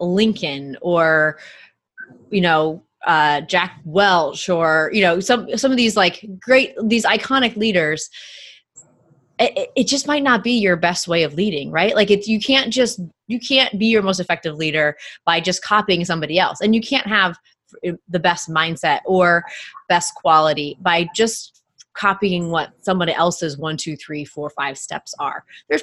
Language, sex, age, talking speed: English, female, 20-39, 165 wpm